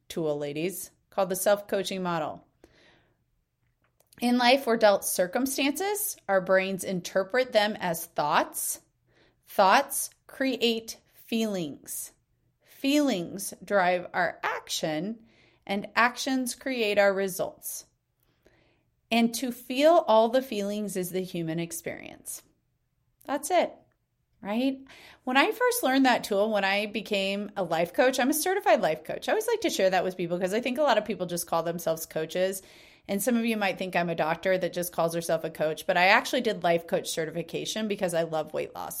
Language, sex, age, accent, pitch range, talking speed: English, female, 30-49, American, 185-250 Hz, 160 wpm